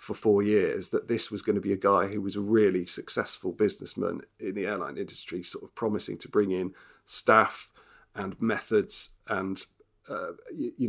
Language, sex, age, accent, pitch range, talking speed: English, male, 40-59, British, 100-120 Hz, 180 wpm